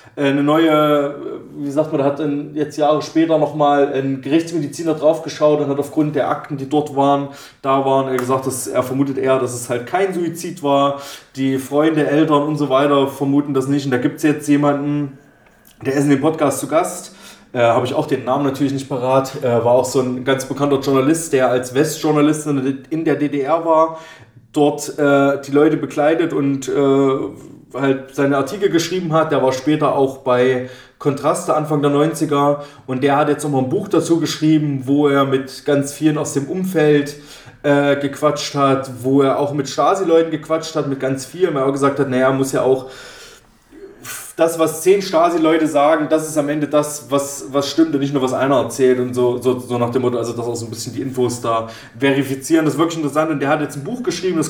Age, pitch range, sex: 30-49, 135-150 Hz, male